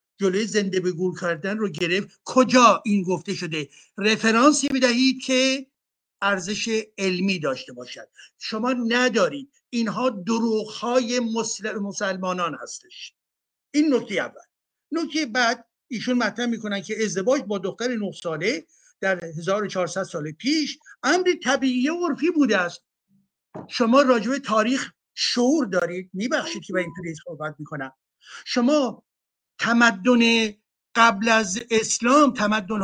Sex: male